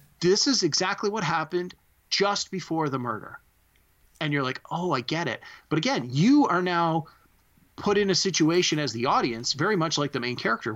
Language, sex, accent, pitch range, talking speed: English, male, American, 130-175 Hz, 190 wpm